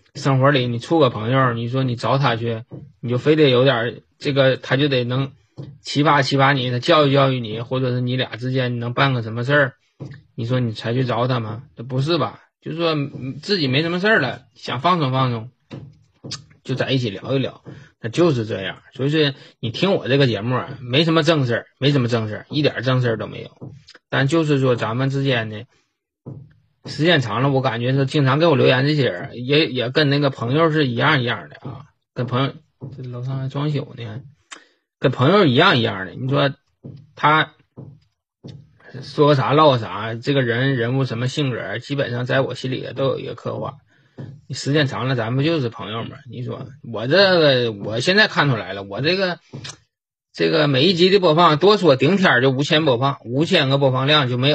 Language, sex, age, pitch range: Chinese, male, 20-39, 125-145 Hz